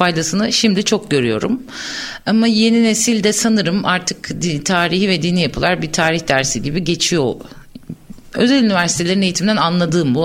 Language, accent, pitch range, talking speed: Turkish, native, 170-215 Hz, 135 wpm